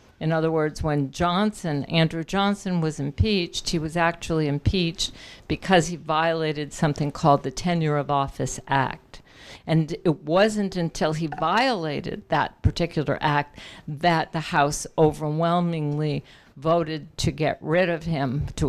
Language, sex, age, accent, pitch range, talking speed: English, female, 50-69, American, 150-180 Hz, 140 wpm